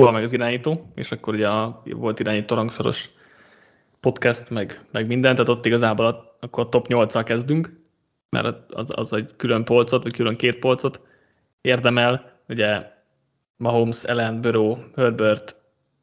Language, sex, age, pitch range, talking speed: Hungarian, male, 20-39, 115-130 Hz, 145 wpm